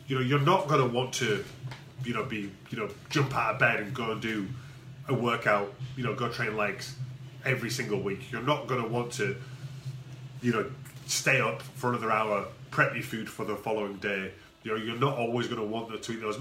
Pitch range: 120-145 Hz